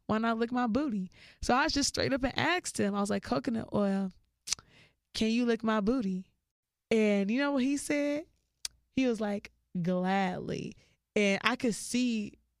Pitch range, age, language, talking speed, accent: 190-220 Hz, 20-39, English, 180 wpm, American